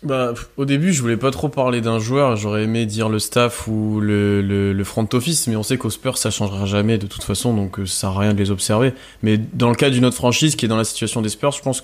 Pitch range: 100-120 Hz